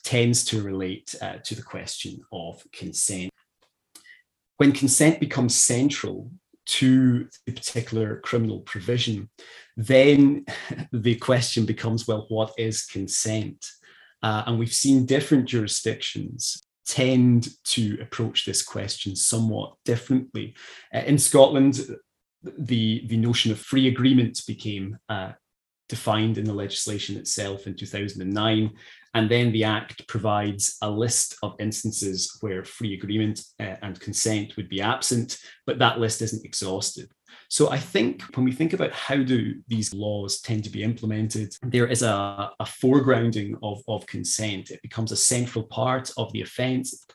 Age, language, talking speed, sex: 30-49, English, 140 wpm, male